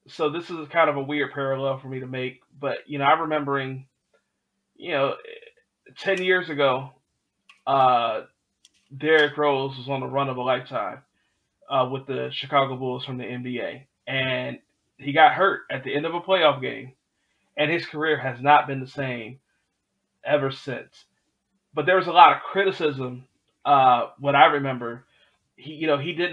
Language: English